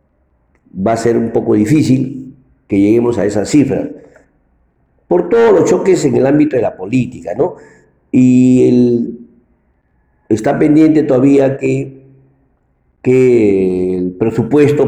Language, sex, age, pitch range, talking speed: Spanish, male, 50-69, 95-140 Hz, 125 wpm